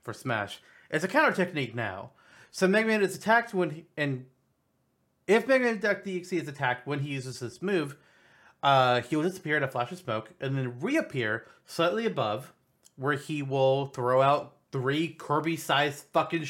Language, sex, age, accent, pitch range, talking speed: English, male, 30-49, American, 120-165 Hz, 180 wpm